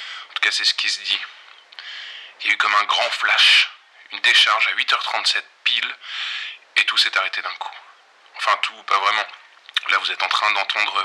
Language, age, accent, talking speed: French, 20-39, French, 185 wpm